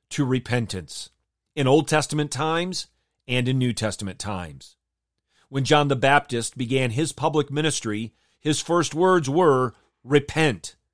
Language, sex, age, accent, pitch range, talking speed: English, male, 40-59, American, 115-160 Hz, 130 wpm